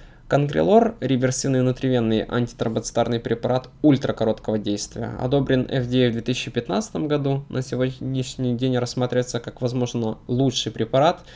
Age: 20-39